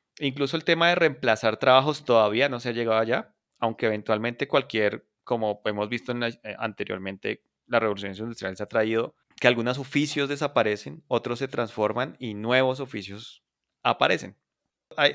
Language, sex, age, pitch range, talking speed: Spanish, male, 30-49, 105-130 Hz, 160 wpm